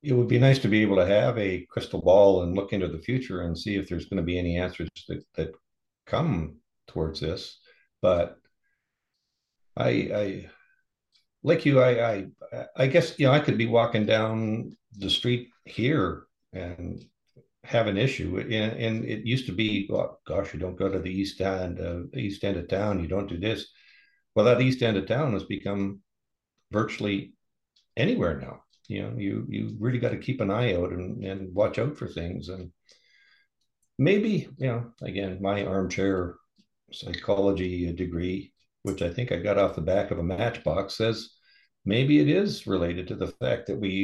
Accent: American